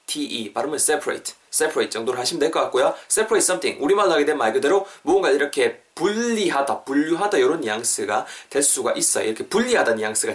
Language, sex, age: Korean, male, 20-39